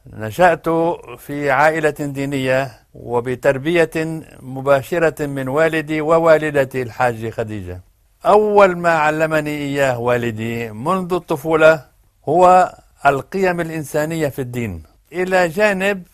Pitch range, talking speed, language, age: 125-165 Hz, 95 wpm, Arabic, 60-79